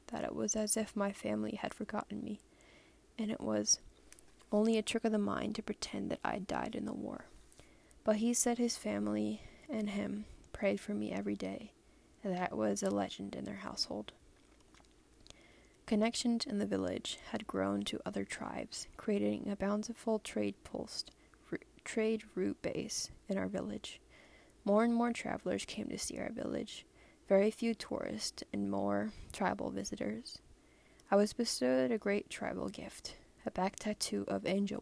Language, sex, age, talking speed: English, female, 10-29, 165 wpm